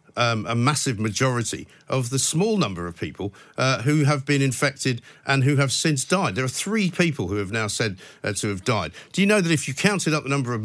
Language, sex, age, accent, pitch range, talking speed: English, male, 50-69, British, 115-145 Hz, 240 wpm